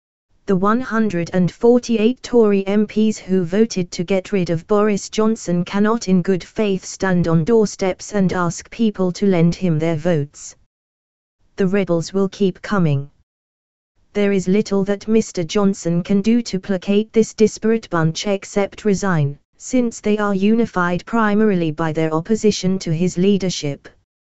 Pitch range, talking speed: 165-210 Hz, 145 wpm